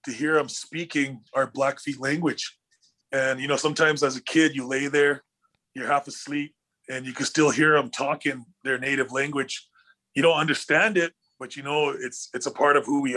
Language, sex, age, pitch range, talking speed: English, male, 20-39, 135-160 Hz, 200 wpm